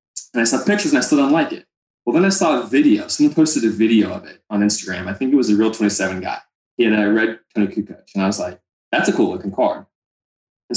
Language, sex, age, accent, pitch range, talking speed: English, male, 20-39, American, 100-115 Hz, 260 wpm